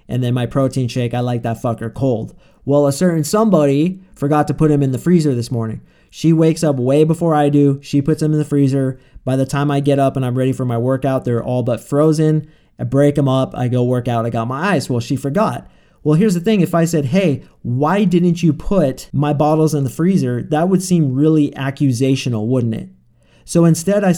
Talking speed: 235 wpm